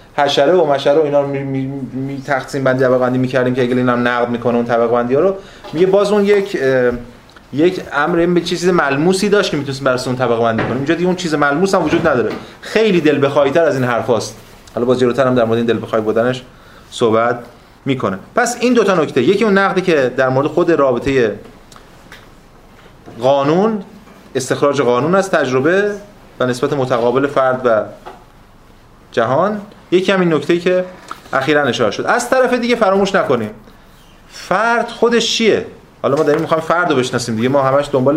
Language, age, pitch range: Persian, 30-49, 125-170 Hz